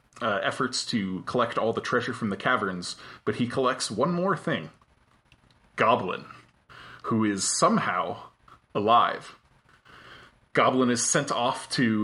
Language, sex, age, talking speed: English, male, 20-39, 130 wpm